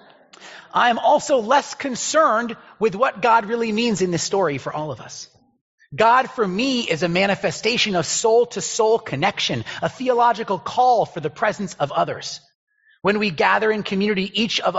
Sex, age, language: male, 30-49, English